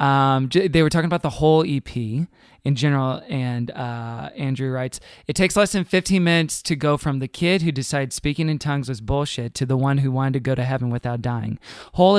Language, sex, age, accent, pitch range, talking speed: English, male, 20-39, American, 130-160 Hz, 215 wpm